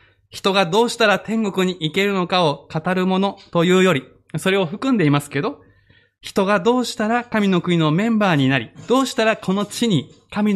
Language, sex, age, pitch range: Japanese, male, 20-39, 135-210 Hz